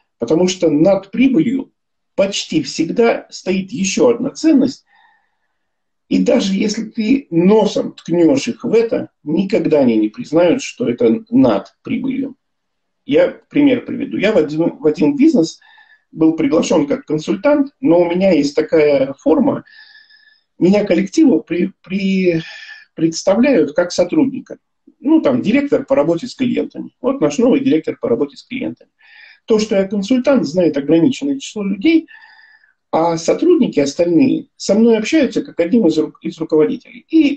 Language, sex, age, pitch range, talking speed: Russian, male, 50-69, 175-290 Hz, 135 wpm